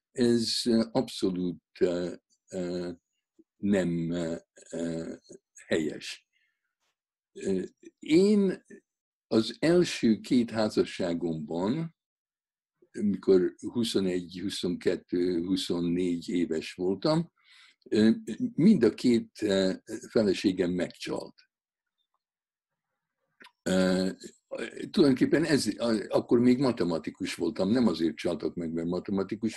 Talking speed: 60 wpm